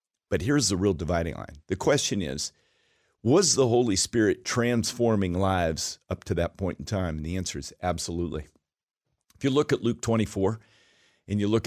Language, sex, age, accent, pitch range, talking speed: English, male, 50-69, American, 95-120 Hz, 180 wpm